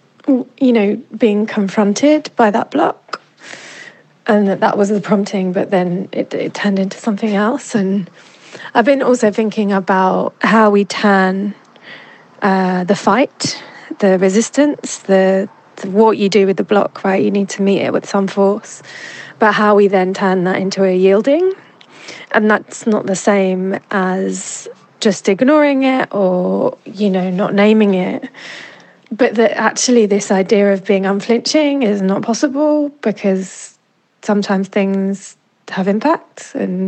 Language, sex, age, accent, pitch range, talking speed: English, female, 30-49, British, 190-225 Hz, 150 wpm